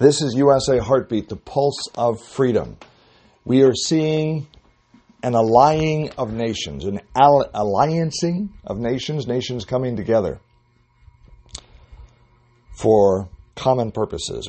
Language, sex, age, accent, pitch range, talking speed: English, male, 50-69, American, 95-120 Hz, 105 wpm